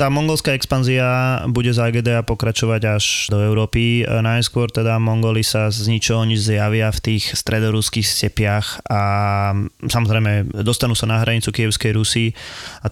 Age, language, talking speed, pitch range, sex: 20-39, Slovak, 145 wpm, 110-120 Hz, male